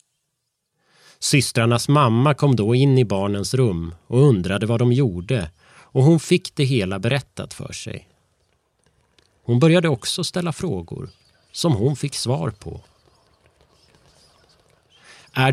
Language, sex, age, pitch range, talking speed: Swedish, male, 30-49, 100-140 Hz, 125 wpm